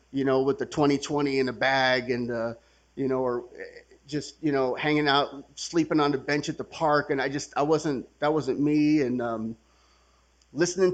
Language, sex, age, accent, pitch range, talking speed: English, male, 30-49, American, 115-150 Hz, 195 wpm